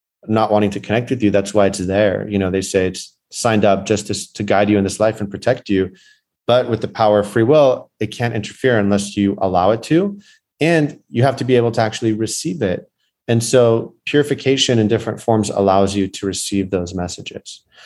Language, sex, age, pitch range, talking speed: English, male, 30-49, 95-110 Hz, 220 wpm